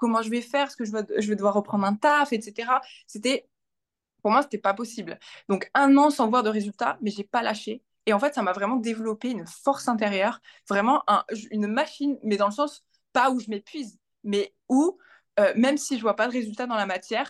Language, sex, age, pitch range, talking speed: French, female, 20-39, 215-270 Hz, 240 wpm